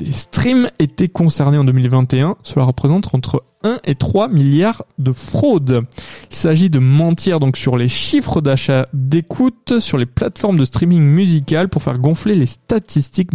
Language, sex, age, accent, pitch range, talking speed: French, male, 20-39, French, 135-170 Hz, 160 wpm